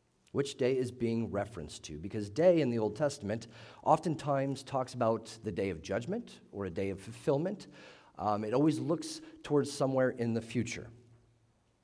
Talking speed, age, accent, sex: 165 wpm, 40-59, American, male